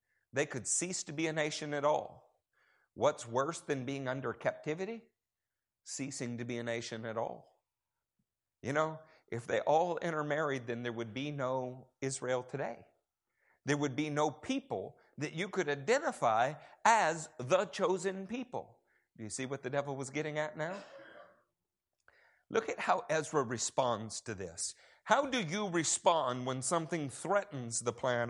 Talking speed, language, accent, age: 155 wpm, English, American, 50-69